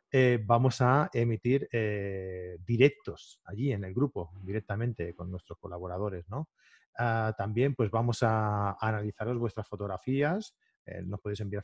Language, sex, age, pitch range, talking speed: Spanish, male, 30-49, 100-130 Hz, 145 wpm